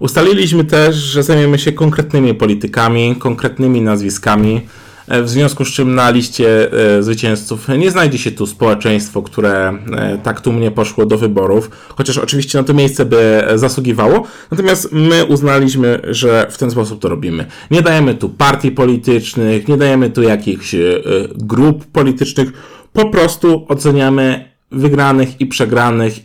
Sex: male